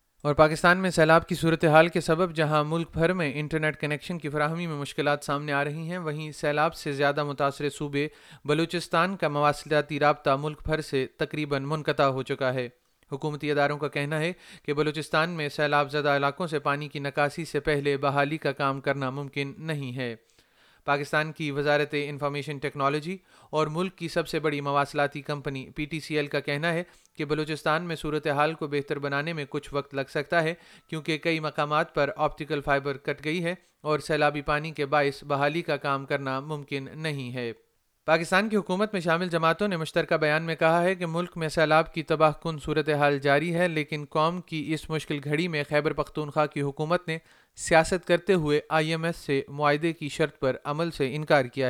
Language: Urdu